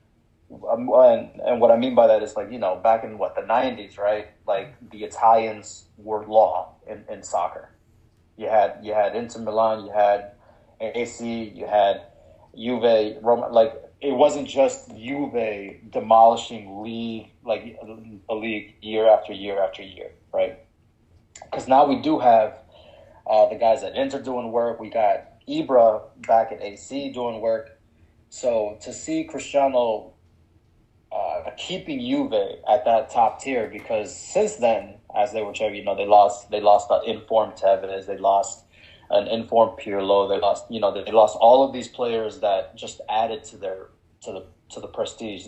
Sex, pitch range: male, 105-125 Hz